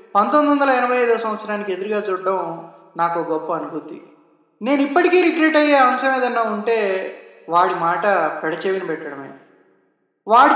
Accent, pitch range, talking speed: native, 190-250 Hz, 125 wpm